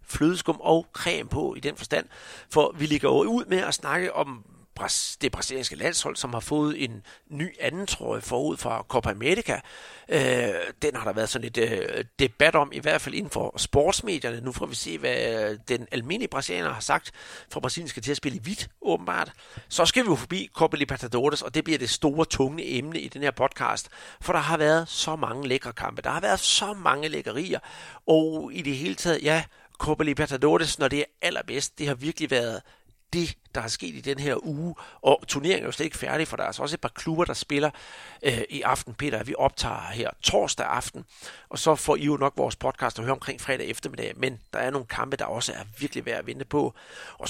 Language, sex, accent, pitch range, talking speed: Danish, male, native, 135-165 Hz, 220 wpm